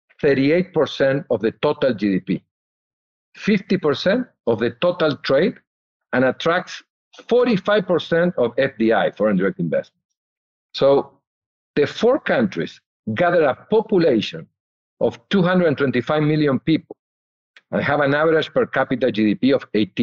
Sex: male